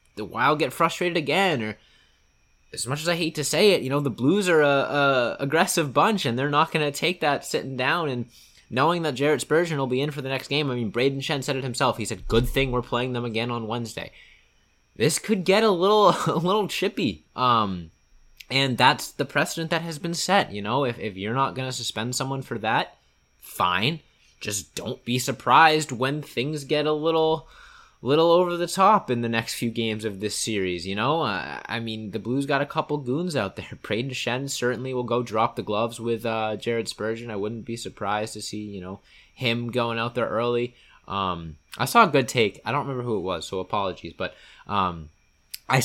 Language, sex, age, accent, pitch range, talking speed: English, male, 20-39, American, 115-150 Hz, 215 wpm